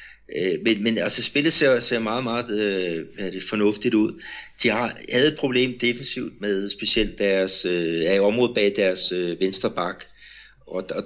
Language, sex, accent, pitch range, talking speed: Danish, male, native, 95-110 Hz, 155 wpm